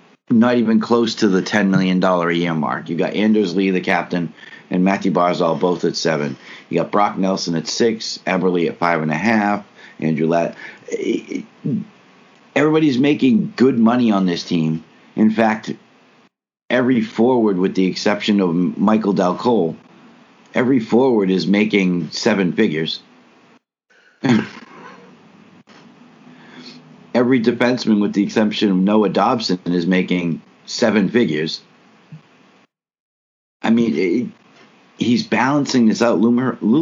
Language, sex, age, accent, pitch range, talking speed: English, male, 50-69, American, 90-120 Hz, 130 wpm